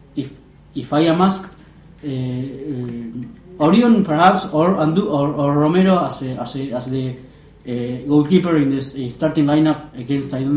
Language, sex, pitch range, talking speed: English, male, 135-170 Hz, 165 wpm